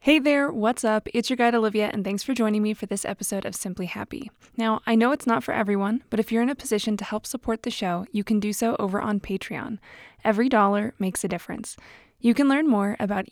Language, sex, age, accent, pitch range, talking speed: English, female, 20-39, American, 205-245 Hz, 245 wpm